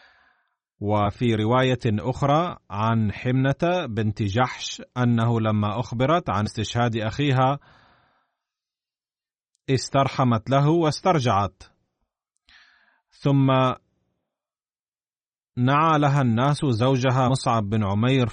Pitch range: 110-140 Hz